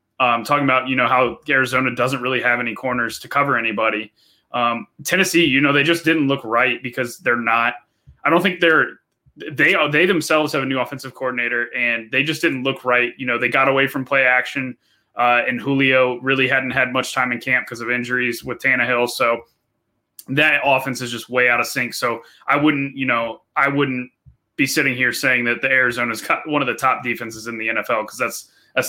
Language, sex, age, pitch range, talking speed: English, male, 20-39, 120-135 Hz, 215 wpm